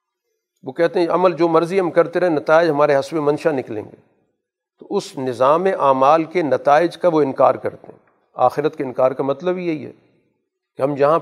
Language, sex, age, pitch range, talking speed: Urdu, male, 50-69, 135-170 Hz, 195 wpm